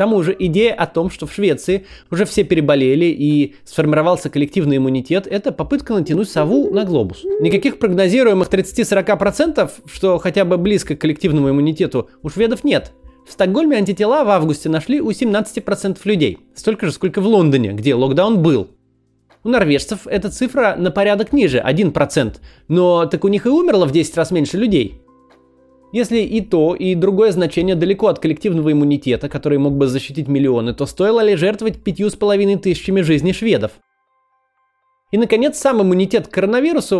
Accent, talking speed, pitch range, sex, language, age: native, 165 wpm, 155-215 Hz, male, Russian, 20-39